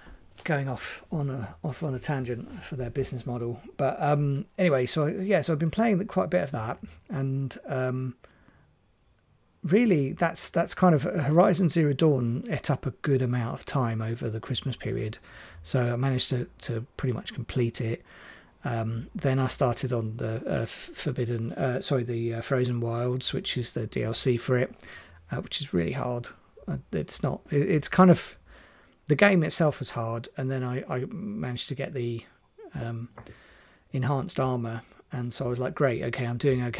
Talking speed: 185 wpm